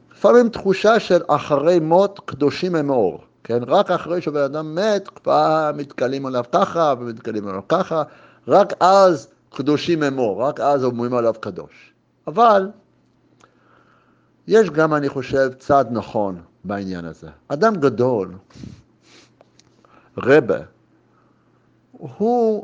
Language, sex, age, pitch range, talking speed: Hebrew, male, 60-79, 130-185 Hz, 110 wpm